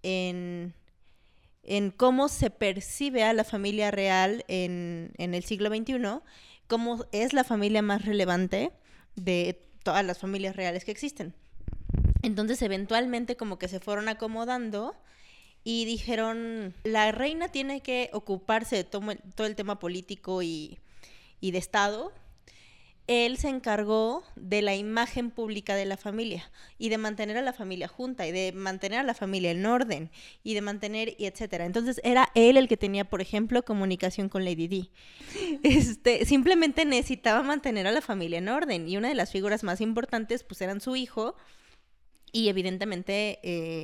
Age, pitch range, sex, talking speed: 20-39, 190-230 Hz, female, 155 wpm